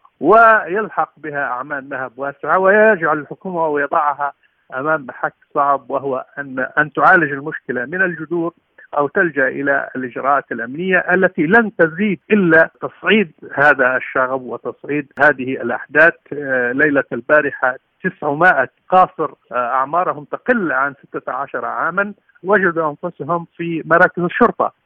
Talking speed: 115 wpm